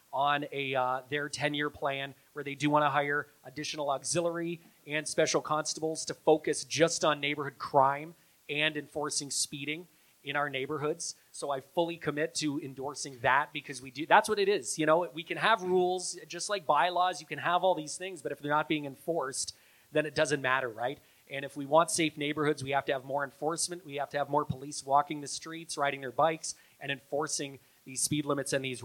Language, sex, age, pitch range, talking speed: English, male, 30-49, 140-165 Hz, 205 wpm